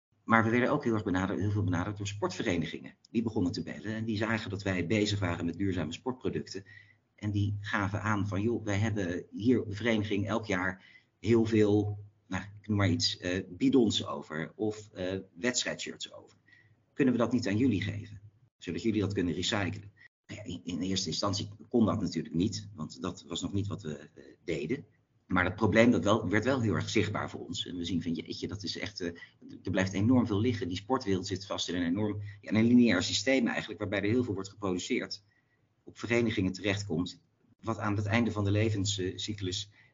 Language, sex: Dutch, male